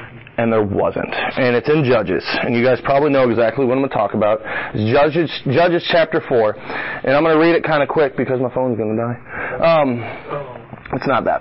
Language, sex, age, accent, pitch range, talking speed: English, male, 30-49, American, 125-165 Hz, 225 wpm